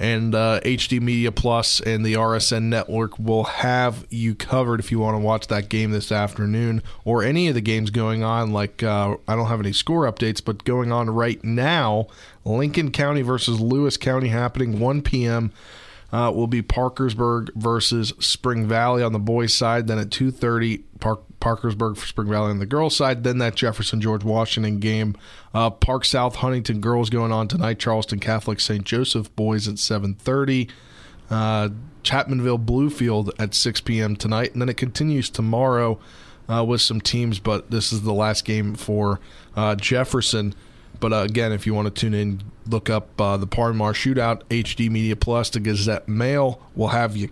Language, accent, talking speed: English, American, 180 wpm